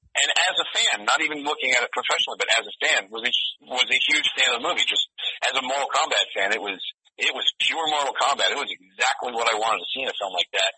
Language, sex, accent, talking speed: English, male, American, 265 wpm